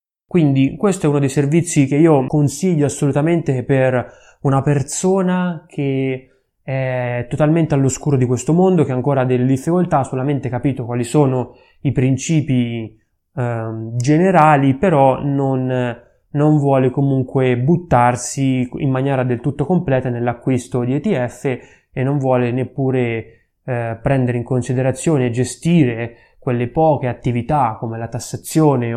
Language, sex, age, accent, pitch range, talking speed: Italian, male, 20-39, native, 125-145 Hz, 135 wpm